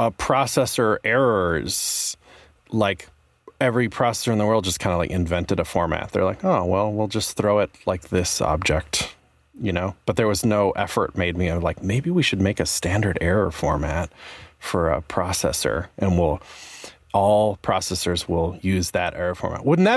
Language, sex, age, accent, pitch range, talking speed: English, male, 30-49, American, 90-110 Hz, 175 wpm